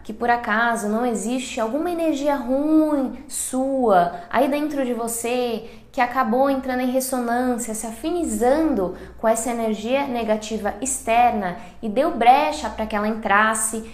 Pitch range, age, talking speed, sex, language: 195-255 Hz, 10-29, 140 wpm, female, Portuguese